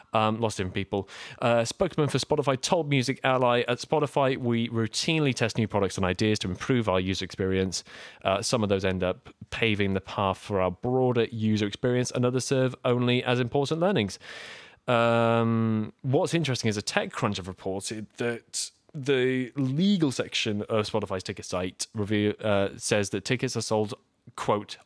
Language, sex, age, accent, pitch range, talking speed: English, male, 20-39, British, 100-125 Hz, 170 wpm